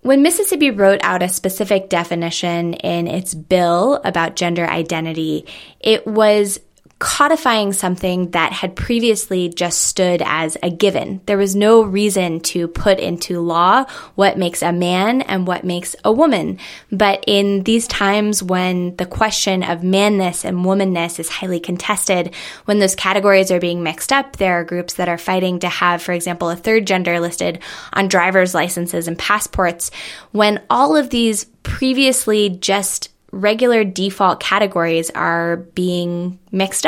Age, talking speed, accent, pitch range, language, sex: 20-39, 155 wpm, American, 175-205 Hz, English, female